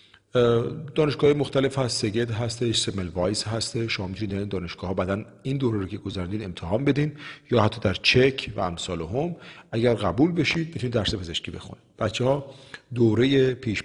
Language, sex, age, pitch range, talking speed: Persian, male, 40-59, 100-130 Hz, 160 wpm